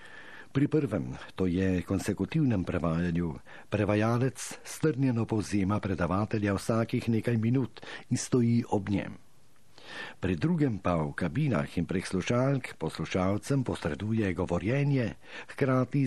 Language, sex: Italian, male